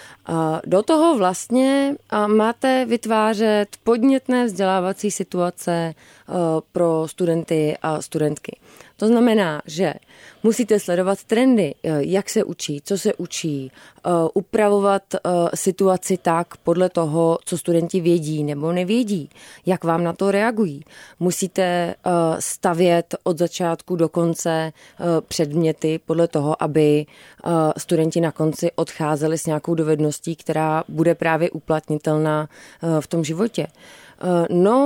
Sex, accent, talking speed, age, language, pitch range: female, native, 110 wpm, 20-39, Czech, 160-215 Hz